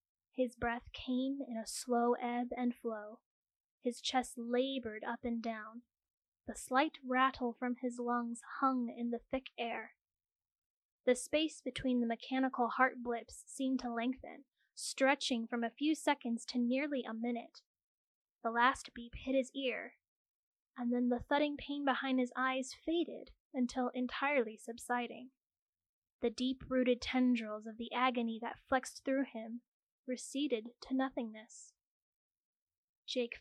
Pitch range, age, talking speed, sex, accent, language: 235-265 Hz, 10-29, 140 wpm, female, American, English